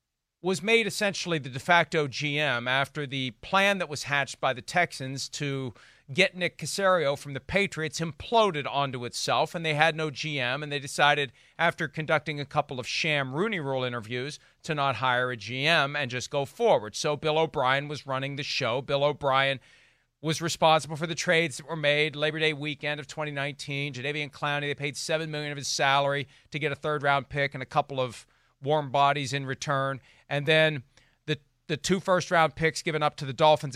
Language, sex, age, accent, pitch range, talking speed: English, male, 40-59, American, 140-175 Hz, 195 wpm